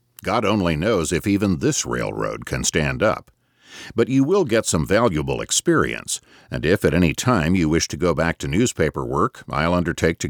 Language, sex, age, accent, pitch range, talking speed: English, male, 50-69, American, 80-120 Hz, 190 wpm